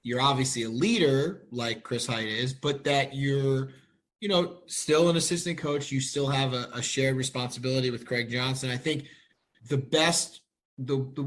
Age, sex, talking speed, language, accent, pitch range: 20-39, male, 175 wpm, English, American, 130-150 Hz